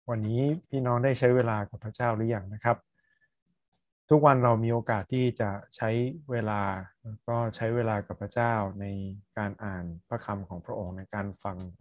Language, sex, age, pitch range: Thai, male, 20-39, 105-125 Hz